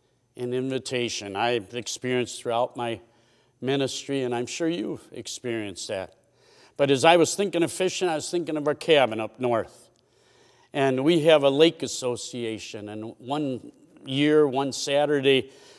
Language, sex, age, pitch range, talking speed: English, male, 50-69, 130-175 Hz, 150 wpm